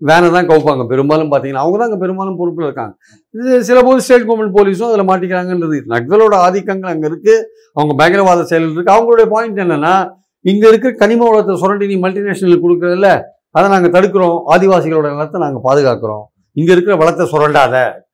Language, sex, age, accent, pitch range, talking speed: Tamil, male, 50-69, native, 155-210 Hz, 155 wpm